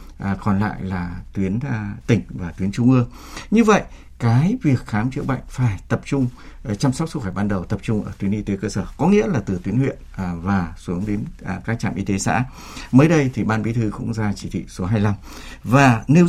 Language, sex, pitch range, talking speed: Vietnamese, male, 95-135 Hz, 240 wpm